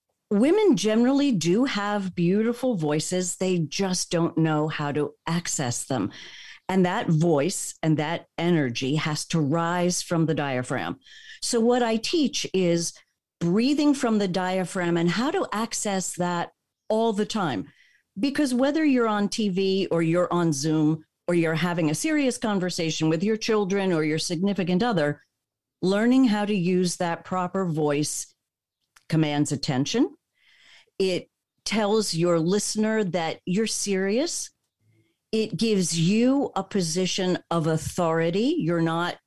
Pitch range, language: 165-210 Hz, English